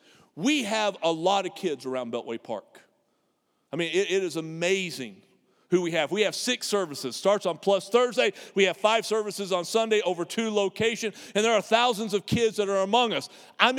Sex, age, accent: male, 50-69, American